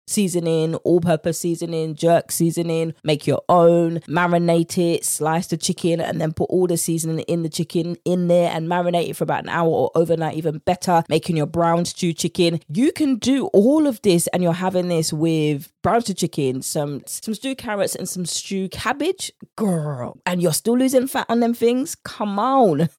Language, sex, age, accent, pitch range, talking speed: English, female, 20-39, British, 160-195 Hz, 190 wpm